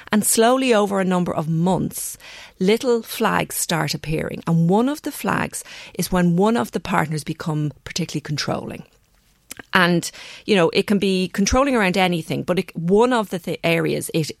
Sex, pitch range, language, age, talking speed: female, 165-220 Hz, English, 40-59, 165 wpm